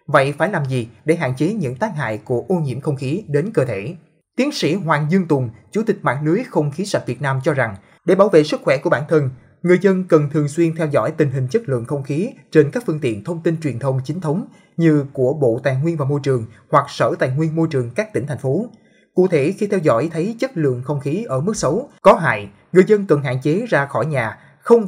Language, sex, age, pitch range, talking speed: Vietnamese, male, 20-39, 135-175 Hz, 260 wpm